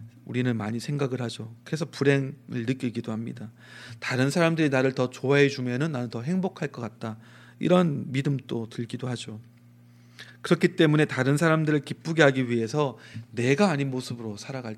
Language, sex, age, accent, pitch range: Korean, male, 40-59, native, 120-155 Hz